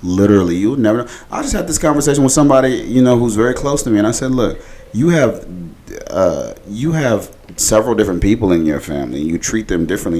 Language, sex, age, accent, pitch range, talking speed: English, male, 30-49, American, 85-105 Hz, 225 wpm